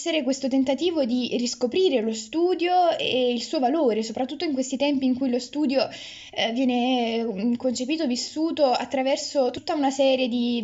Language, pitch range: Italian, 235-300 Hz